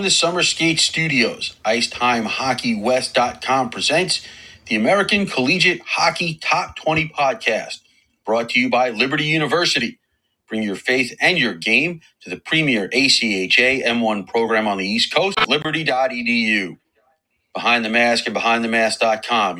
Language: English